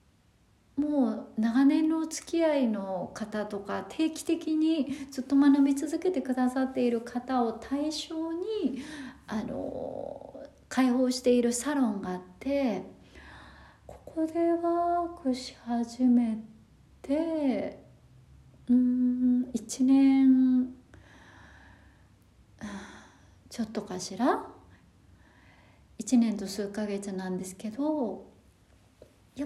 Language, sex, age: Japanese, female, 40-59